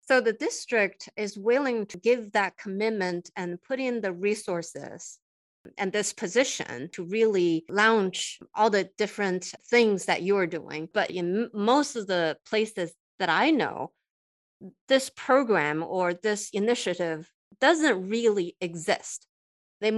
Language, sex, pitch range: English, female, 185-235 Hz